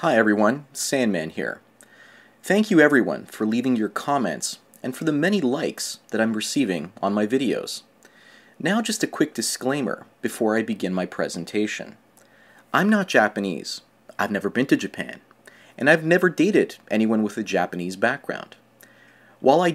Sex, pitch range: male, 105-150 Hz